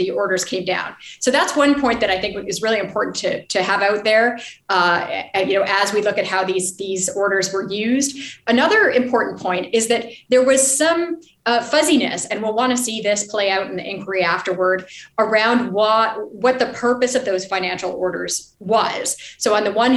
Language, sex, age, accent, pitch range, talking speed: English, female, 30-49, American, 195-255 Hz, 205 wpm